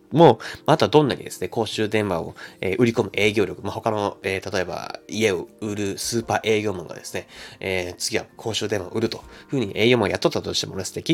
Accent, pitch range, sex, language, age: native, 95-120 Hz, male, Japanese, 20-39